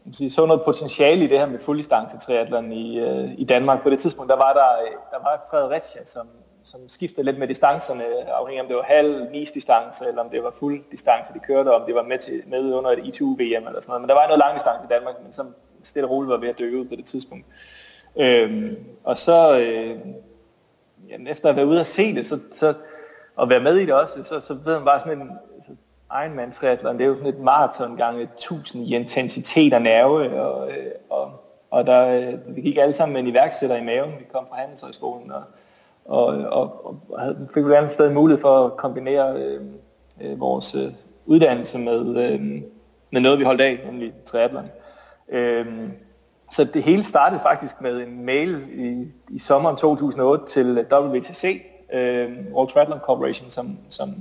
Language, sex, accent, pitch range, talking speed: Danish, male, native, 120-150 Hz, 205 wpm